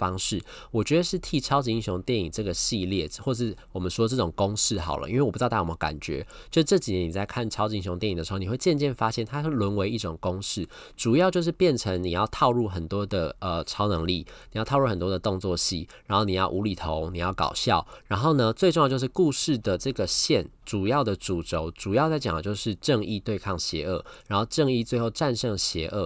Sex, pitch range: male, 90-120 Hz